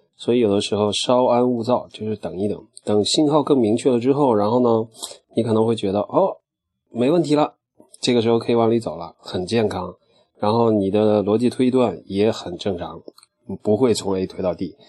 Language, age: Chinese, 20-39